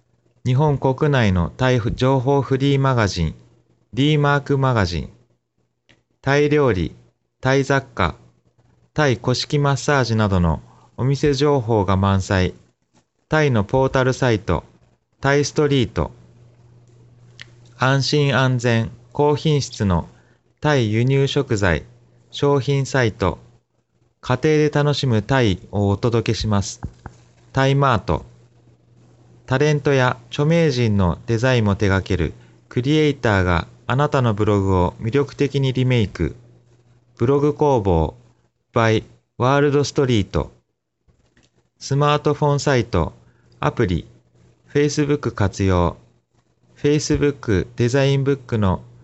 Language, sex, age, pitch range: Japanese, male, 30-49, 95-140 Hz